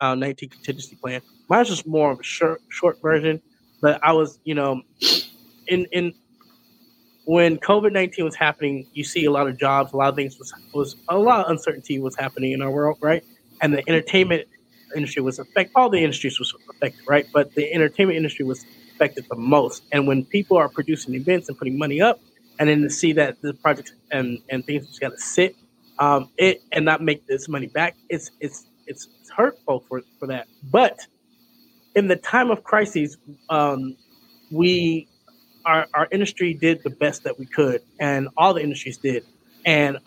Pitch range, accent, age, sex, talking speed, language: 140-165 Hz, American, 20-39, male, 190 wpm, English